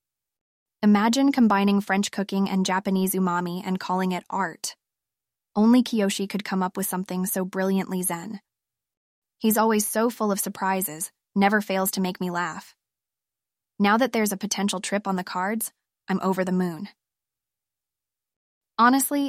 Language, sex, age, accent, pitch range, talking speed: English, female, 20-39, American, 185-215 Hz, 145 wpm